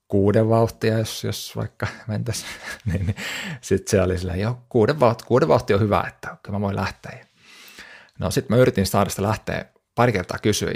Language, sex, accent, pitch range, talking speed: Finnish, male, native, 100-120 Hz, 180 wpm